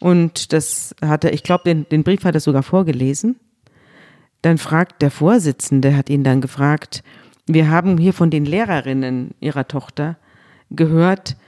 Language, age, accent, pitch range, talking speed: German, 40-59, German, 135-180 Hz, 155 wpm